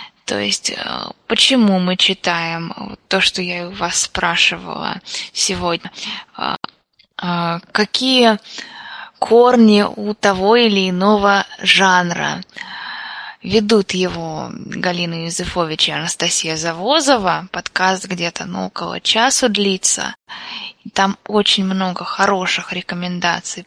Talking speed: 90 wpm